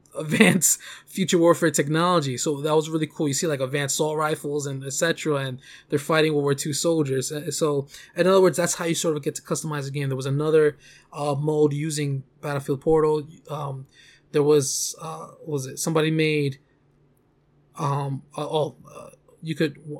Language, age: English, 20-39